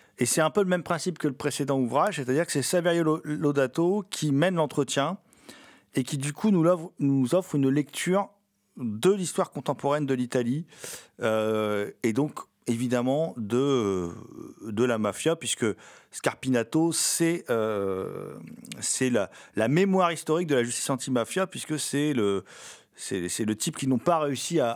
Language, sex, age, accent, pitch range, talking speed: French, male, 40-59, French, 125-180 Hz, 160 wpm